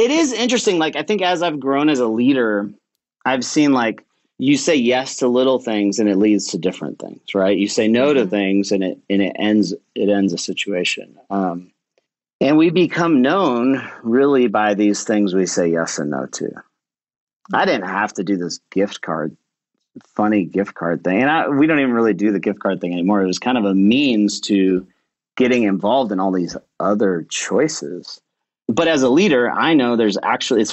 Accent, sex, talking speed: American, male, 205 wpm